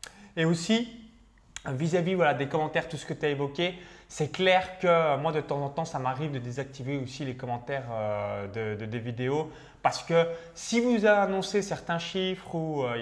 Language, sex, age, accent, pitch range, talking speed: French, male, 20-39, French, 135-185 Hz, 190 wpm